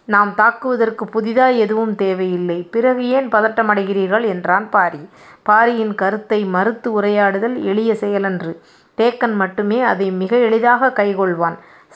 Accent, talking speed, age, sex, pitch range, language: native, 110 wpm, 30-49, female, 195-225 Hz, Tamil